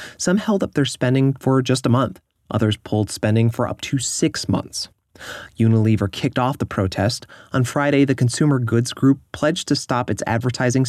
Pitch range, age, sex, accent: 110-135 Hz, 30-49, male, American